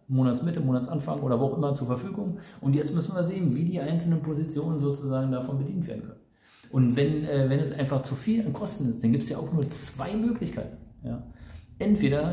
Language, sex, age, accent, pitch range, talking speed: German, male, 40-59, German, 120-155 Hz, 205 wpm